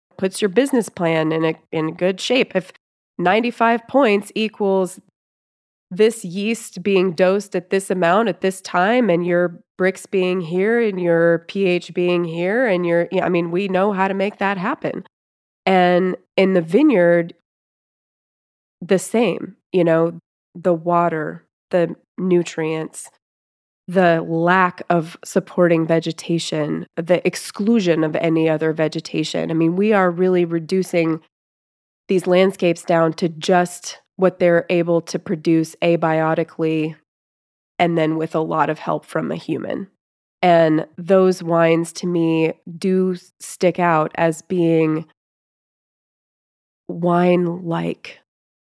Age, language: 20-39, English